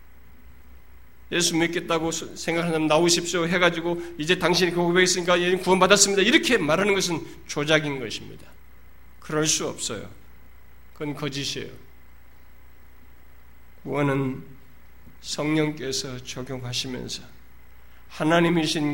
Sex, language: male, Korean